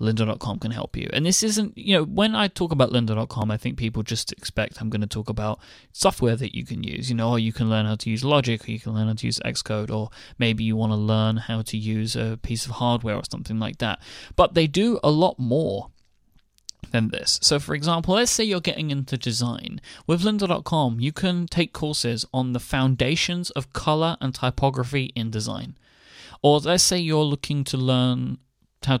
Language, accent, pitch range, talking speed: English, British, 115-160 Hz, 215 wpm